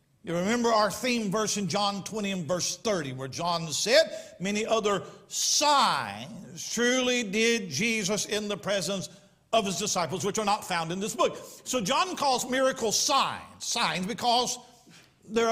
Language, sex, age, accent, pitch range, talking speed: English, male, 50-69, American, 190-235 Hz, 160 wpm